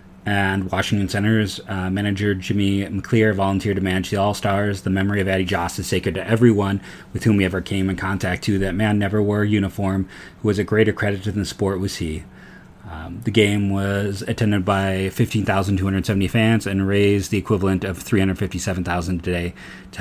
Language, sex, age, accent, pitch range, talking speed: English, male, 30-49, American, 90-105 Hz, 185 wpm